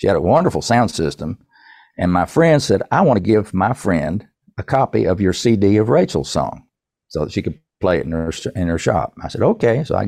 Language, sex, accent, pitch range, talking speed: English, male, American, 95-125 Hz, 240 wpm